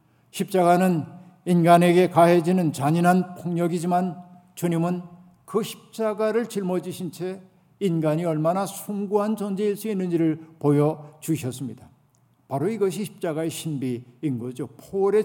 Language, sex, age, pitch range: Korean, male, 50-69, 140-180 Hz